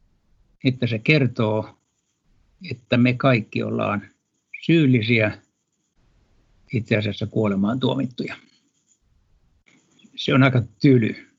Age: 60-79